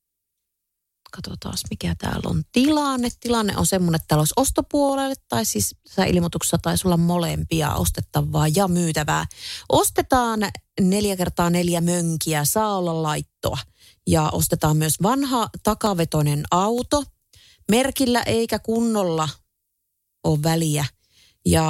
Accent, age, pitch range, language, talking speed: native, 30-49, 150-200 Hz, Finnish, 115 wpm